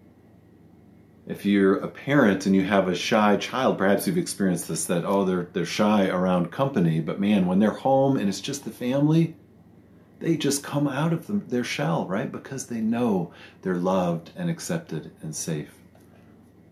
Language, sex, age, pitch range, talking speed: English, male, 40-59, 100-165 Hz, 175 wpm